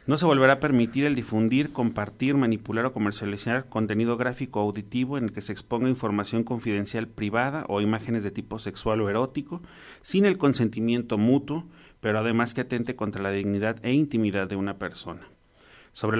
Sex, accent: male, Mexican